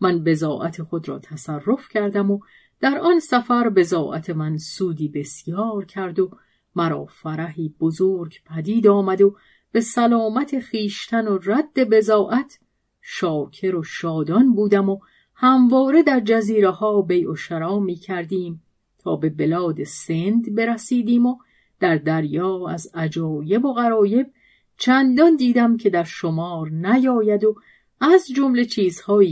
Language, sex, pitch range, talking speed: Persian, female, 170-230 Hz, 130 wpm